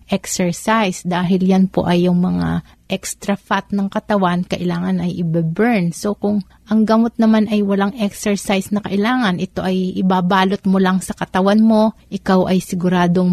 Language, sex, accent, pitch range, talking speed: Filipino, female, native, 175-205 Hz, 160 wpm